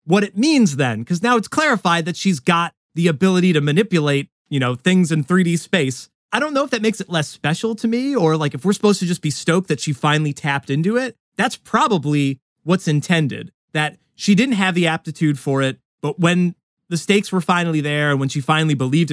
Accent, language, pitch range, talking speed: American, English, 155-210 Hz, 225 wpm